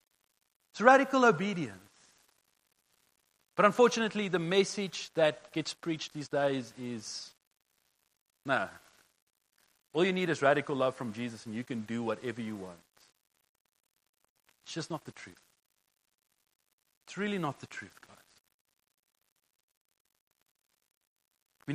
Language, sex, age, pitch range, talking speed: English, male, 40-59, 130-185 Hz, 115 wpm